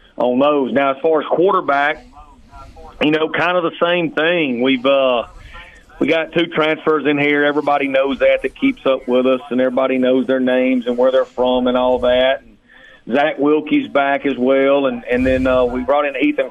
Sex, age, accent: male, 40-59, American